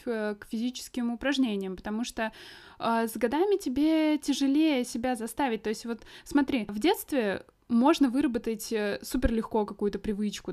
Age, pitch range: 20-39, 220-285 Hz